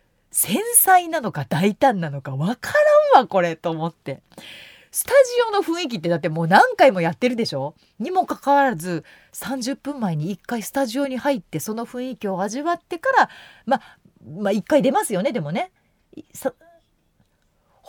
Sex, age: female, 40-59